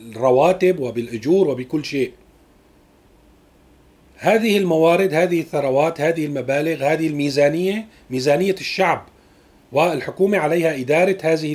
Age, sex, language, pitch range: 40-59, male, Arabic, 140-185 Hz